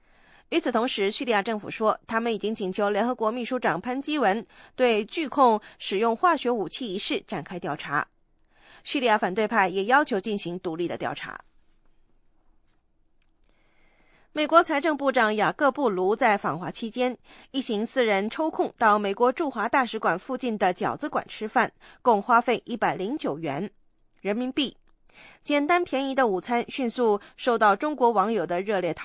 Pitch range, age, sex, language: 200-265 Hz, 20-39, female, English